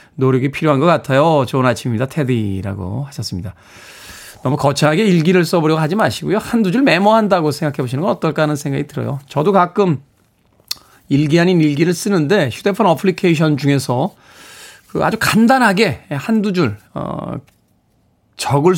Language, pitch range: Korean, 130-170 Hz